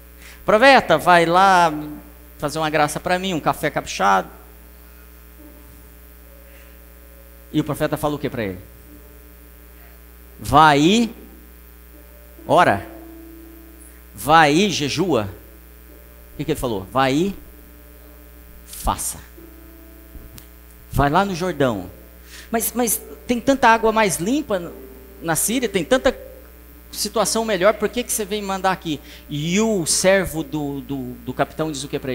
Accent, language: Brazilian, Portuguese